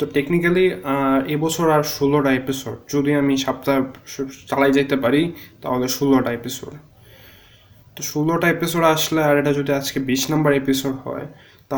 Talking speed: 120 wpm